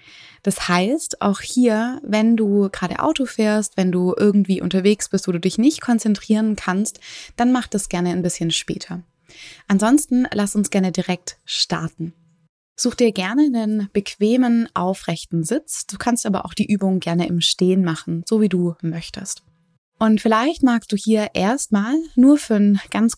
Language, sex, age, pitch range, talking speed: German, female, 20-39, 175-215 Hz, 165 wpm